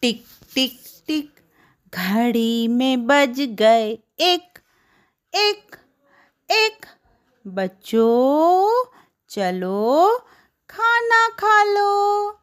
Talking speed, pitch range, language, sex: 70 wpm, 230-385 Hz, English, female